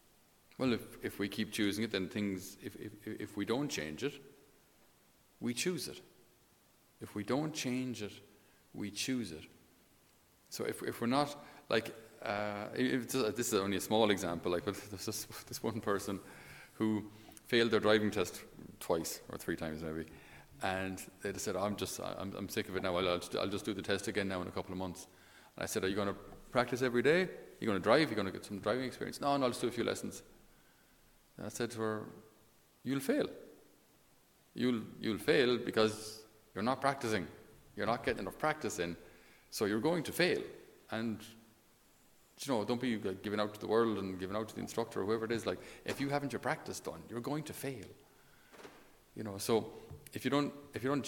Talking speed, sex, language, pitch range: 215 wpm, male, English, 100-120 Hz